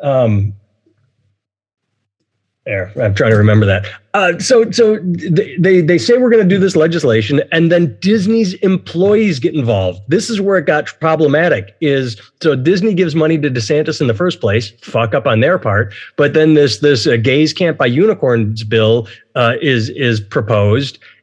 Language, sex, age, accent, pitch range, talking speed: English, male, 30-49, American, 115-170 Hz, 175 wpm